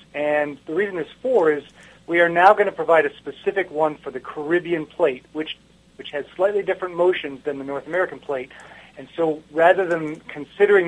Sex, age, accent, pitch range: male, 40-59, American, 150-190 Hz